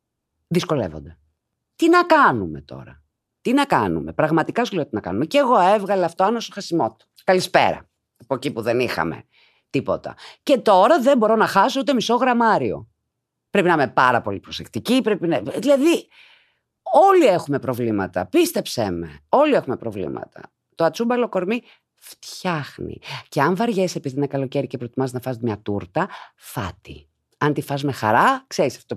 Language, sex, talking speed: Greek, female, 160 wpm